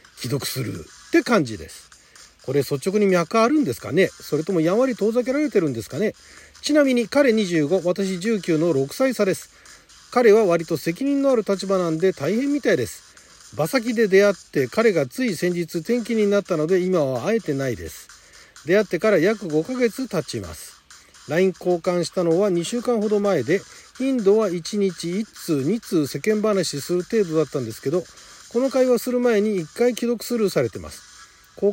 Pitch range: 155-220 Hz